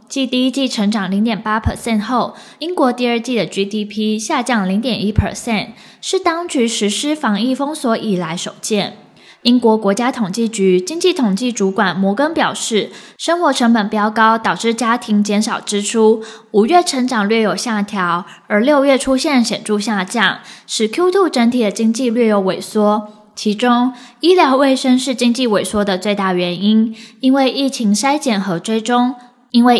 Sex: female